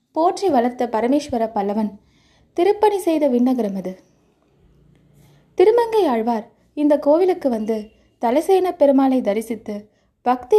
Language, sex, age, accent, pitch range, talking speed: Tamil, female, 20-39, native, 225-305 Hz, 95 wpm